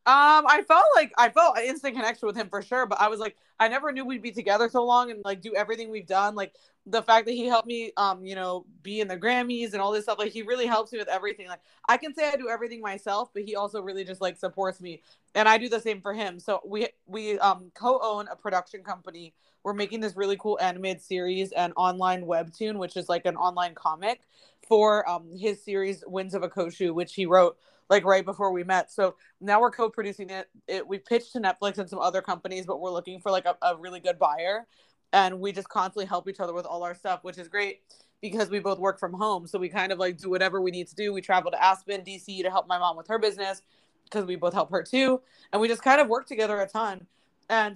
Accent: American